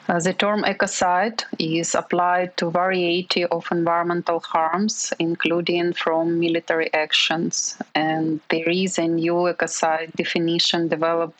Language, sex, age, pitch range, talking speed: English, female, 20-39, 155-175 Hz, 120 wpm